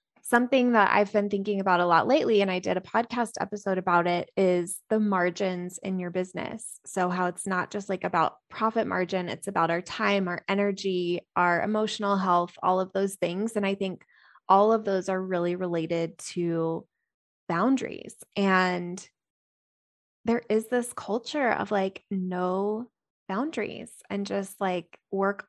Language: English